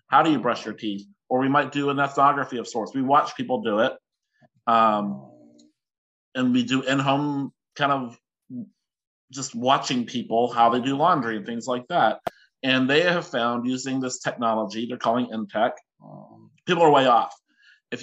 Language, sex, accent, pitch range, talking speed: English, male, American, 115-145 Hz, 175 wpm